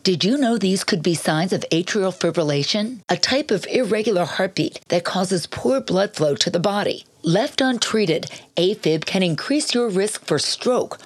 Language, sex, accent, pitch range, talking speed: English, female, American, 175-230 Hz, 175 wpm